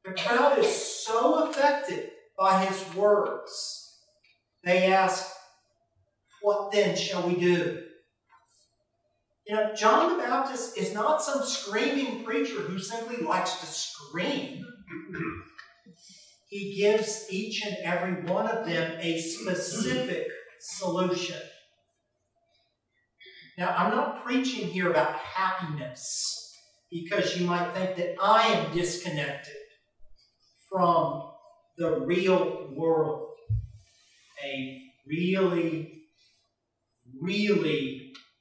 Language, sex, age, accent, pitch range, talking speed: English, male, 40-59, American, 160-220 Hz, 100 wpm